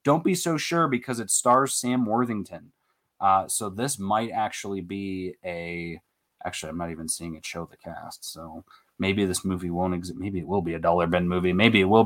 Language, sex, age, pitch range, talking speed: English, male, 30-49, 95-150 Hz, 210 wpm